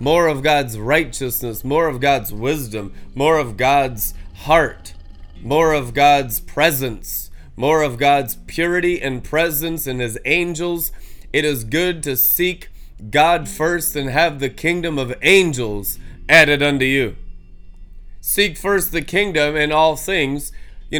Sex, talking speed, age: male, 140 wpm, 20-39